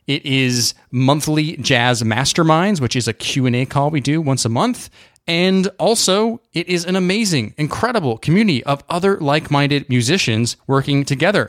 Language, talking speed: English, 150 wpm